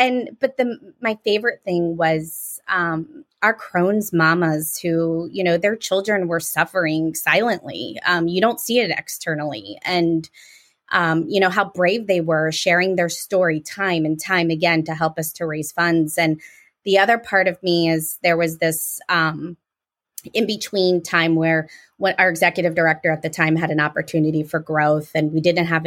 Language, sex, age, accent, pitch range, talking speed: English, female, 20-39, American, 160-195 Hz, 175 wpm